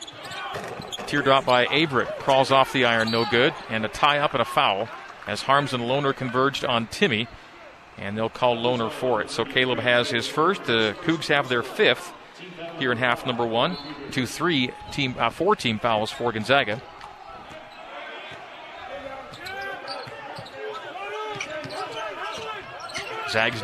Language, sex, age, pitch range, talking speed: English, male, 40-59, 120-160 Hz, 130 wpm